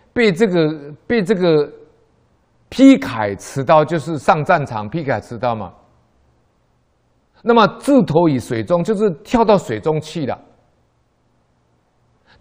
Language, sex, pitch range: Chinese, male, 105-175 Hz